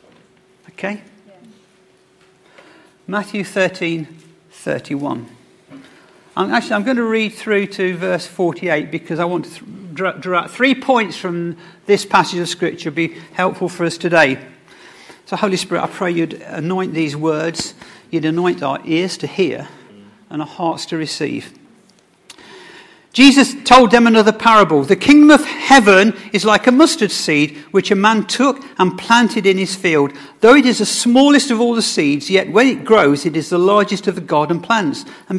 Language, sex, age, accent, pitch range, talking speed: English, male, 50-69, British, 170-225 Hz, 165 wpm